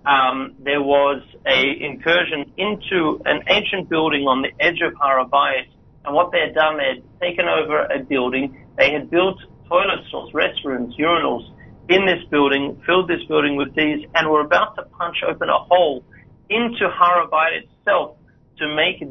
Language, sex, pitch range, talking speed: English, male, 135-165 Hz, 165 wpm